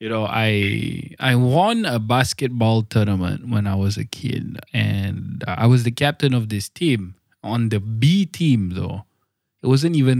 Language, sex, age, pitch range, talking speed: English, male, 20-39, 110-155 Hz, 170 wpm